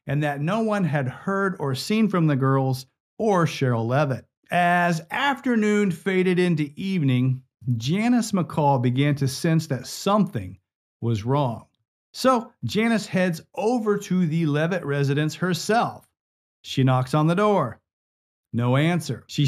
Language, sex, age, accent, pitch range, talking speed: English, male, 40-59, American, 135-190 Hz, 140 wpm